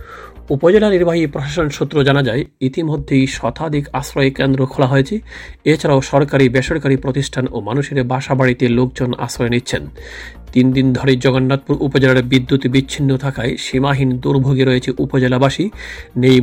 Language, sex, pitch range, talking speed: Bengali, male, 130-150 Hz, 130 wpm